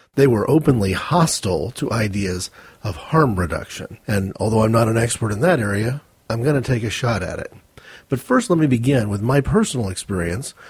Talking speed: 195 wpm